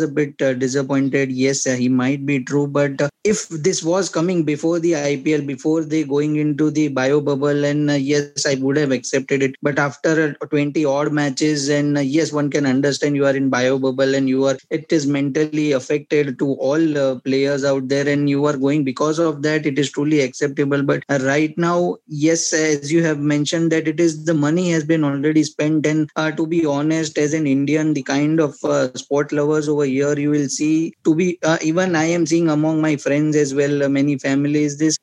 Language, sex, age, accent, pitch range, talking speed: English, male, 20-39, Indian, 140-160 Hz, 220 wpm